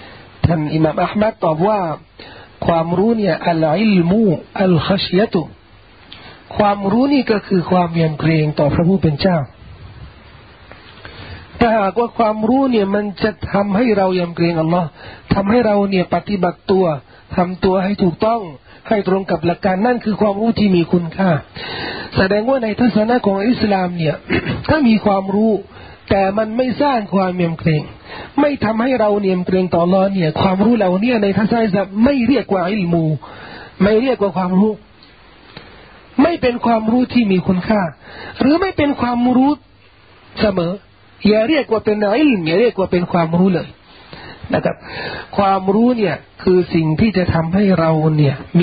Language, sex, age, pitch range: Thai, male, 40-59, 165-215 Hz